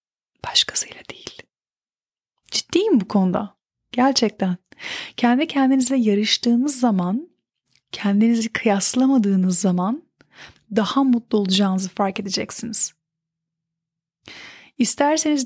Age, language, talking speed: 30-49, Turkish, 75 wpm